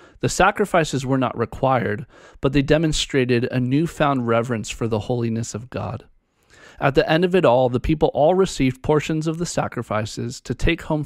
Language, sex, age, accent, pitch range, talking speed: English, male, 40-59, American, 115-145 Hz, 180 wpm